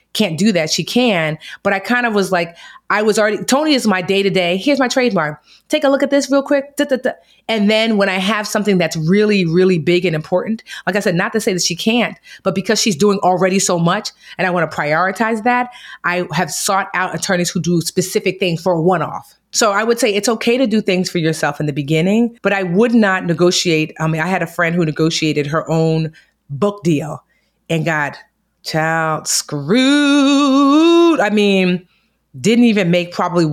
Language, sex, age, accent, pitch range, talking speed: English, female, 30-49, American, 170-215 Hz, 205 wpm